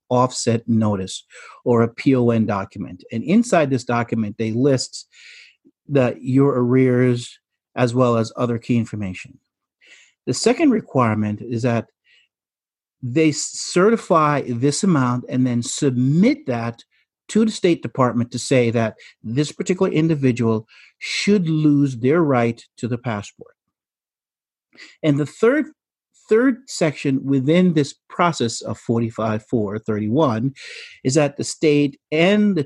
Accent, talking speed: American, 125 wpm